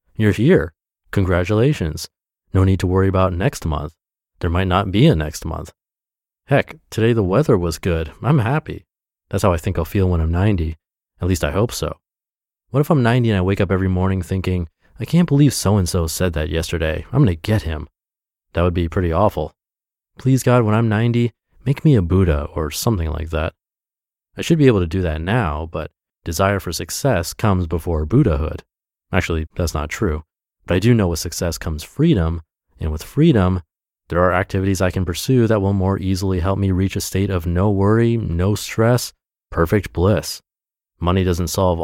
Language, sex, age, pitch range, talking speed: English, male, 30-49, 85-110 Hz, 190 wpm